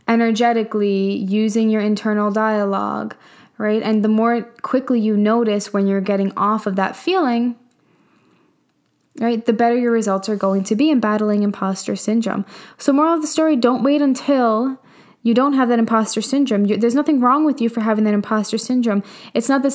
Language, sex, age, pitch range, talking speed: English, female, 10-29, 215-260 Hz, 180 wpm